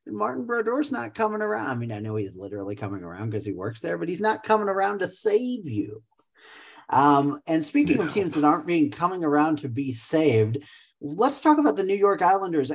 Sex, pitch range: male, 110-155 Hz